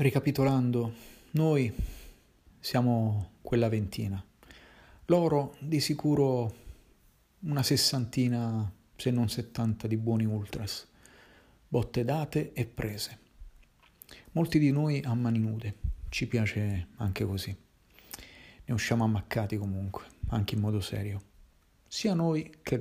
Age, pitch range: 40-59, 100-120 Hz